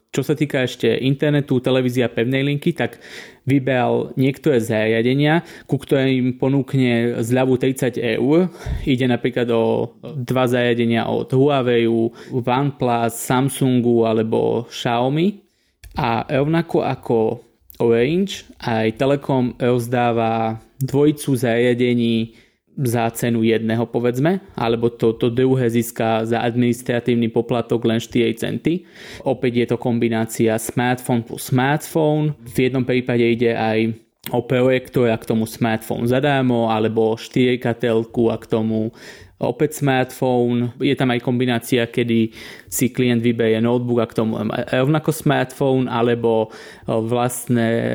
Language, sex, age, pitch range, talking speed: Slovak, male, 20-39, 115-130 Hz, 120 wpm